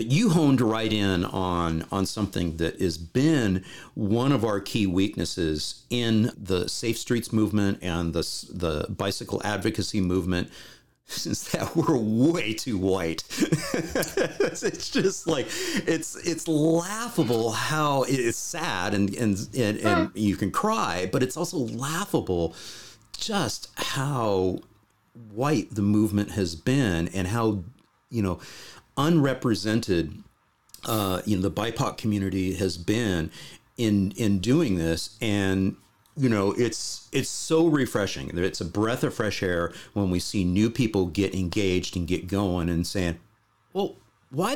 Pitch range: 95-125 Hz